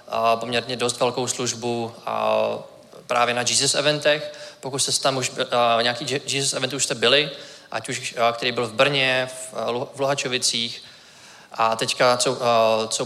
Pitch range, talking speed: 125-140 Hz, 140 wpm